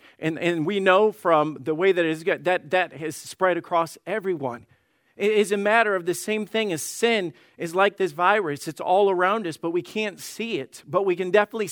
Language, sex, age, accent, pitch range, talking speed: English, male, 50-69, American, 175-225 Hz, 220 wpm